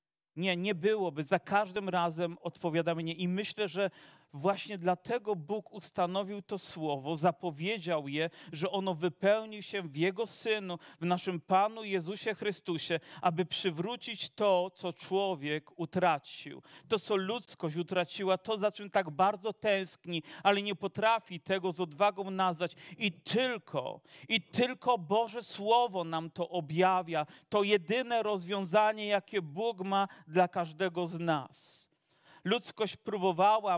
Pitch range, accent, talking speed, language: 180-220 Hz, native, 135 wpm, Polish